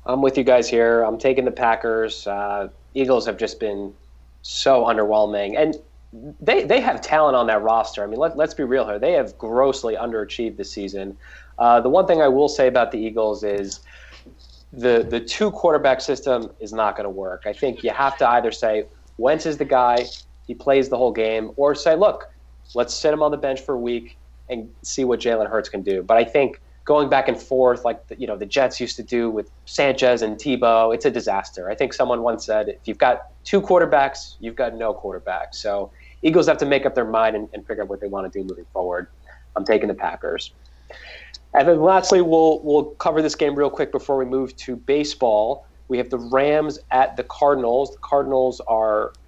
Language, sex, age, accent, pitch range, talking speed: English, male, 20-39, American, 100-135 Hz, 215 wpm